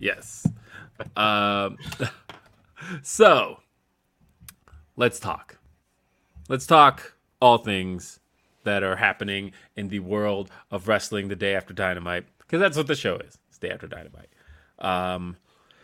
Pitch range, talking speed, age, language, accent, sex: 95-120 Hz, 115 wpm, 30-49, English, American, male